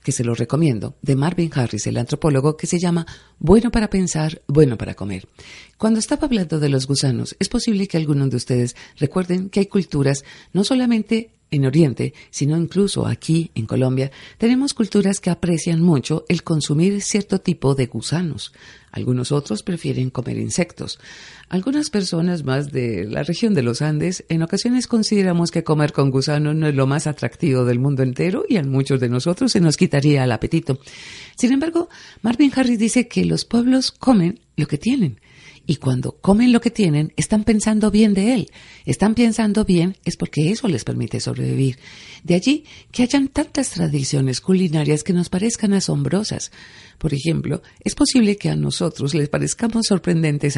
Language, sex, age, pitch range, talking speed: Spanish, female, 50-69, 140-210 Hz, 175 wpm